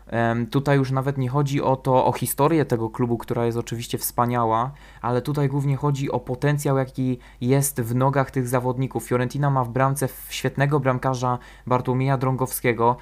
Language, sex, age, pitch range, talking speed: Polish, male, 20-39, 115-130 Hz, 160 wpm